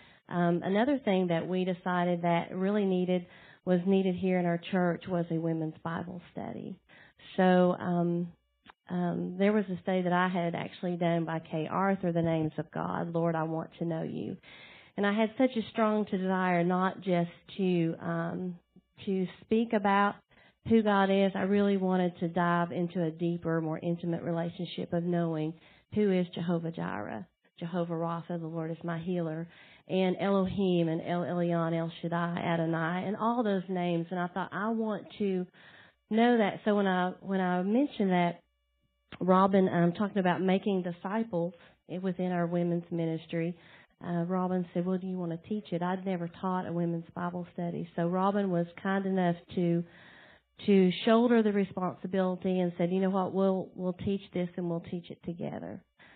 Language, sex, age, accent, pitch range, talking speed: English, female, 40-59, American, 170-190 Hz, 175 wpm